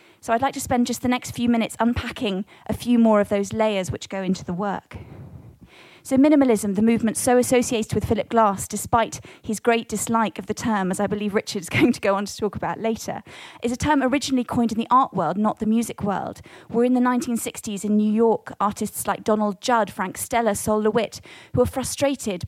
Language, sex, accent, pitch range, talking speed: English, female, British, 210-250 Hz, 215 wpm